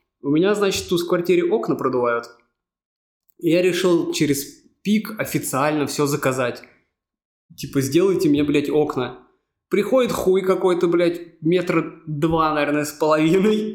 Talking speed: 130 wpm